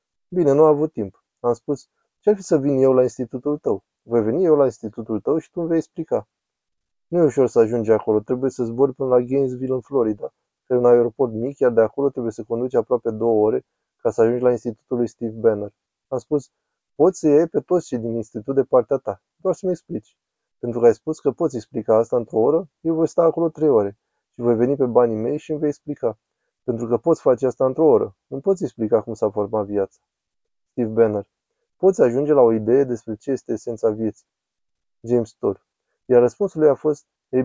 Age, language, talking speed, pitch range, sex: 20-39, Romanian, 220 wpm, 115-145 Hz, male